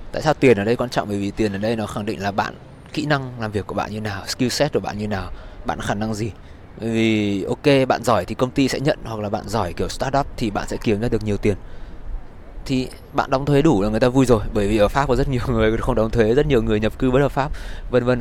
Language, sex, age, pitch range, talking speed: Vietnamese, male, 20-39, 100-120 Hz, 300 wpm